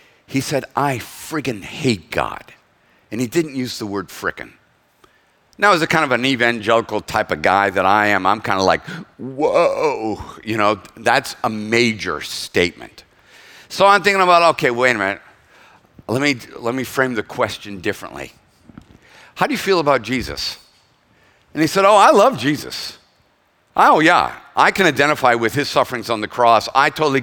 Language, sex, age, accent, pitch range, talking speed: English, male, 50-69, American, 120-175 Hz, 170 wpm